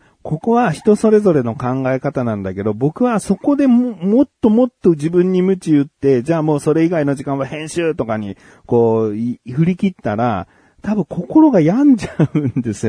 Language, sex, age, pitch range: Japanese, male, 40-59, 130-200 Hz